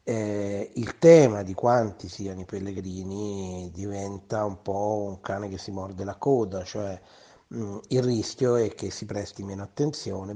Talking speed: 160 wpm